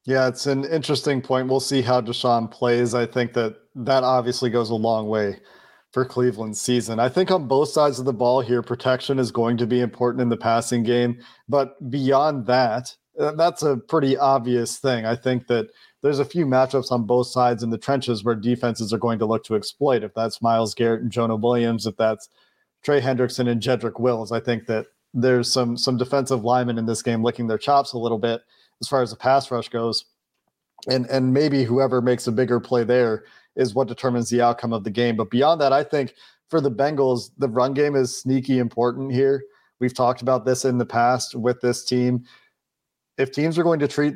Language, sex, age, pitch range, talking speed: English, male, 40-59, 120-130 Hz, 210 wpm